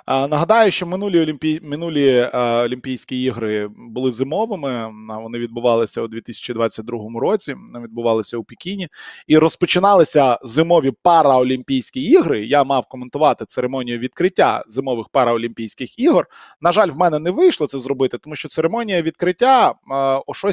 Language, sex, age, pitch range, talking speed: Ukrainian, male, 20-39, 125-155 Hz, 135 wpm